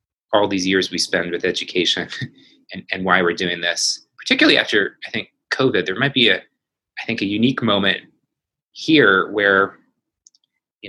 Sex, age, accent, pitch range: male, 30-49, American, 100-155 Hz